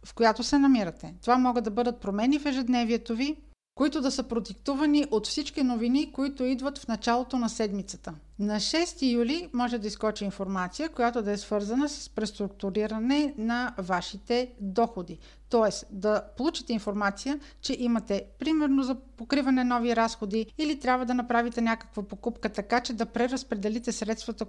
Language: Bulgarian